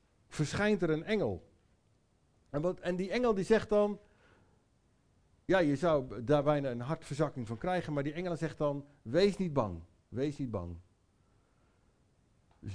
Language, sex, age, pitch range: English, male, 50-69, 105-140 Hz